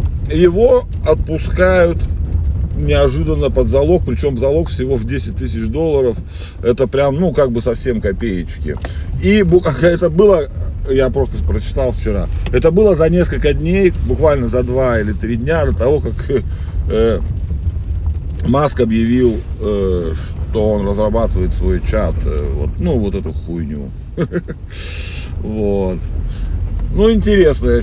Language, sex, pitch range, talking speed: Russian, male, 80-120 Hz, 125 wpm